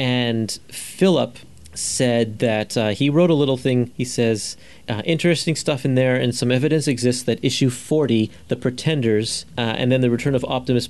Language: English